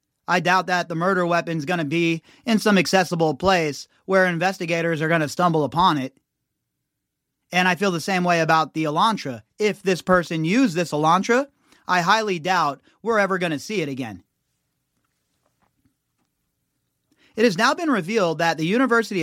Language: English